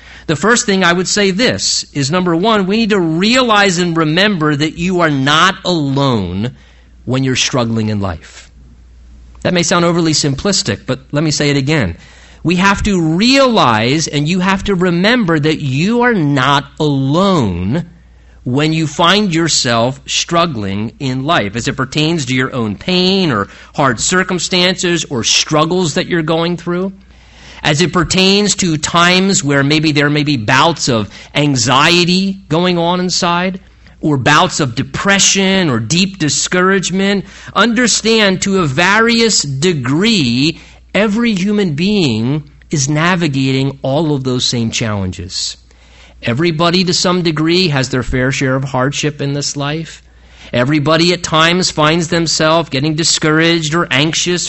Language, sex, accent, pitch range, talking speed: English, male, American, 135-180 Hz, 150 wpm